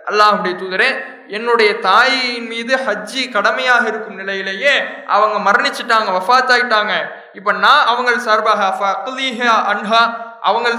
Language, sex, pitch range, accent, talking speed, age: English, male, 210-255 Hz, Indian, 95 wpm, 20-39